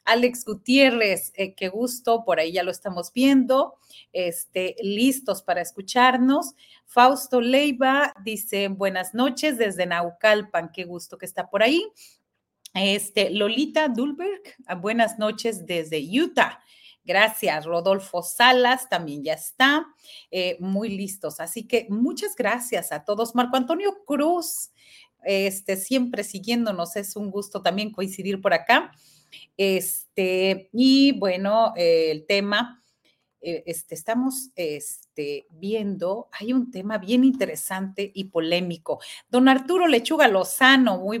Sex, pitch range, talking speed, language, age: female, 185-250 Hz, 125 wpm, Spanish, 40-59